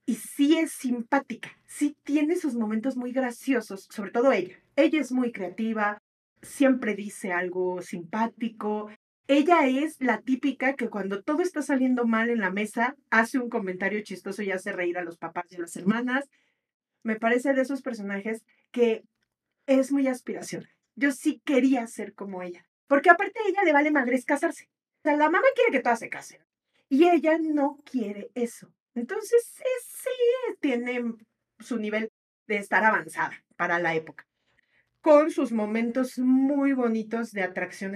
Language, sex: Spanish, female